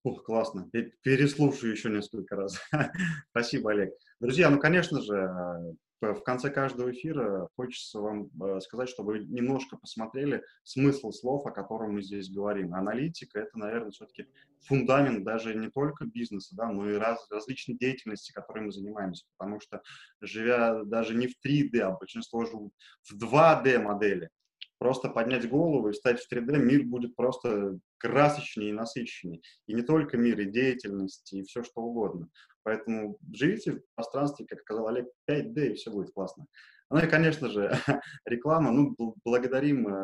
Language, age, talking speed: Russian, 20-39, 155 wpm